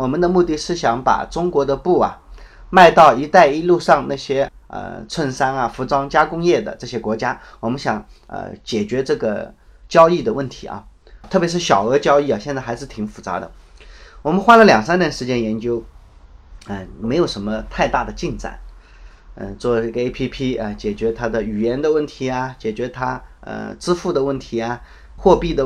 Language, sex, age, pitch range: Chinese, male, 20-39, 110-150 Hz